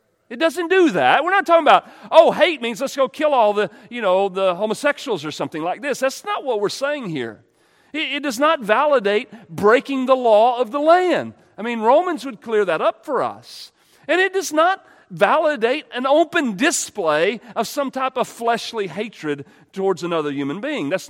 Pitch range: 235-340 Hz